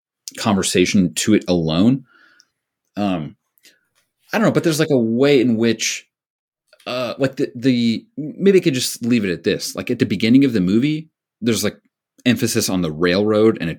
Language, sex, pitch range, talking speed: English, male, 90-125 Hz, 185 wpm